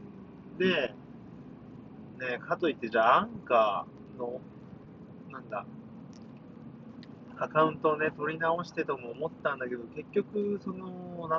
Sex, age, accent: male, 40-59, native